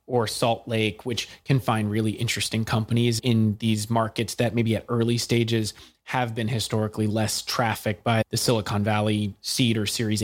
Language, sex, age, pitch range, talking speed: English, male, 30-49, 105-130 Hz, 170 wpm